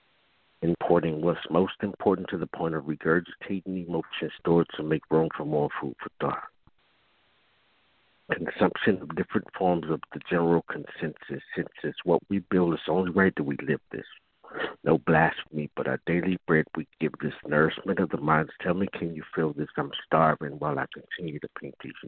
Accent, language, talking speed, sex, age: American, English, 180 wpm, male, 60-79